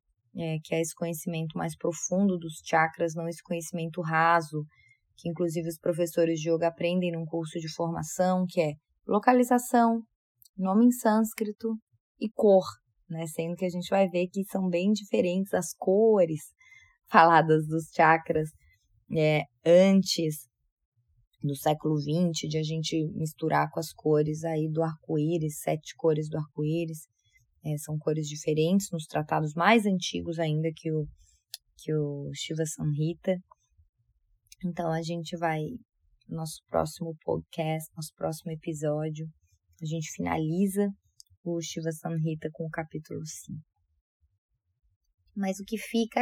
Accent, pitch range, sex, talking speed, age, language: Brazilian, 155-180 Hz, female, 130 wpm, 20-39, Portuguese